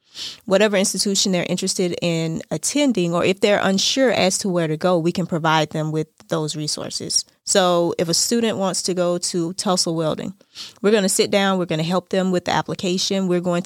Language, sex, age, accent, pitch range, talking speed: English, female, 20-39, American, 175-200 Hz, 205 wpm